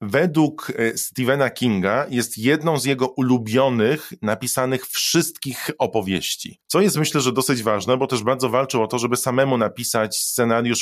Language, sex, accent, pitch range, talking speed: Polish, male, native, 115-140 Hz, 150 wpm